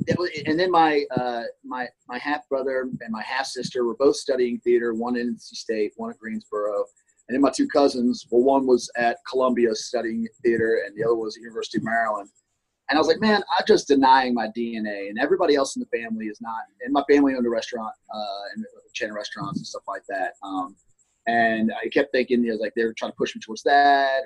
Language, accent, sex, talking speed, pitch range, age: English, American, male, 230 wpm, 115-160 Hz, 30-49